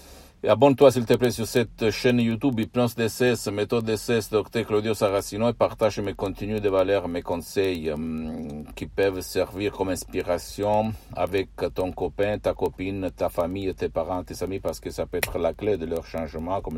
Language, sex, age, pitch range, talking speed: Italian, male, 50-69, 80-105 Hz, 195 wpm